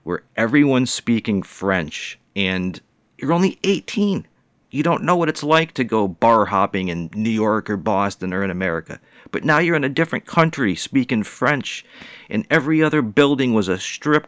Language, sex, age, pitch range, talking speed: English, male, 40-59, 90-120 Hz, 175 wpm